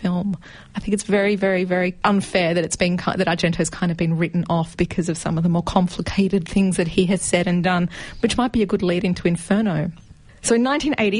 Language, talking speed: English, 235 wpm